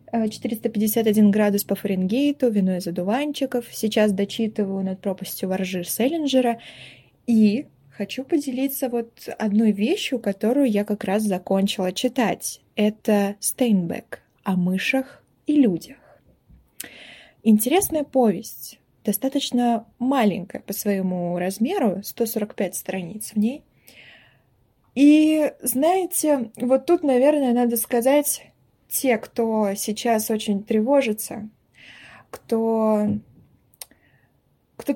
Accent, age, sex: native, 20-39, female